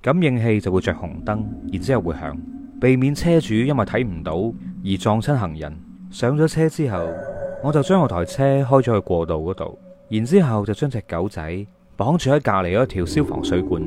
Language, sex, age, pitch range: Chinese, male, 20-39, 100-150 Hz